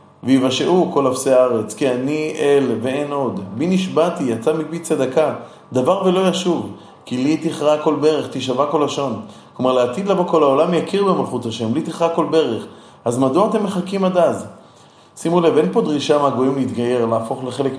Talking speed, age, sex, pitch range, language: 175 wpm, 30-49, male, 120-155 Hz, Hebrew